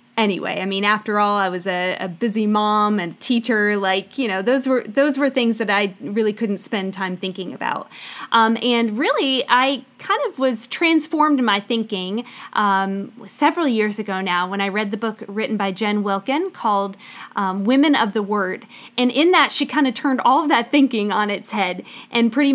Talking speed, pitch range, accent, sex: 205 wpm, 205-255 Hz, American, female